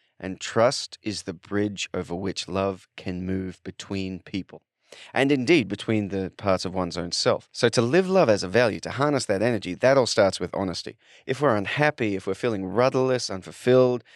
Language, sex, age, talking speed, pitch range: English, male, 30-49, 190 wpm, 95-115 Hz